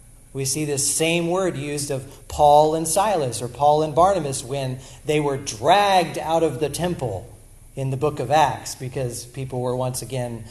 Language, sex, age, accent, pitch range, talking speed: English, male, 40-59, American, 125-180 Hz, 185 wpm